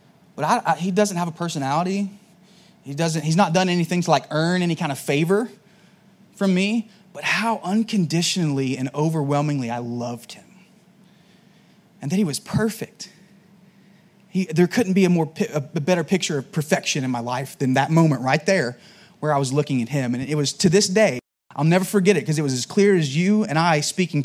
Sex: male